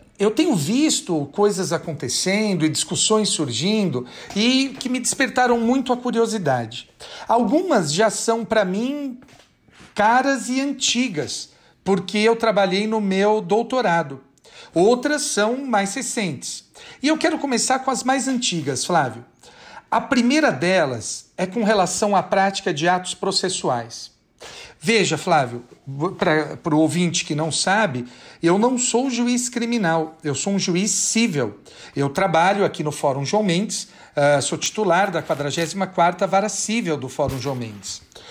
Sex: male